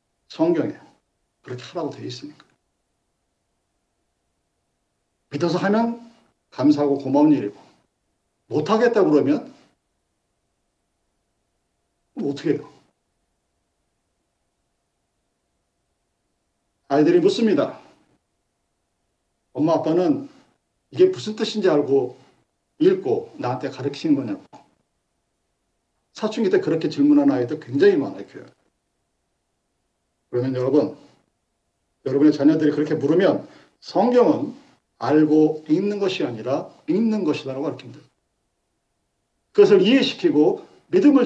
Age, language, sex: 50-69, Korean, male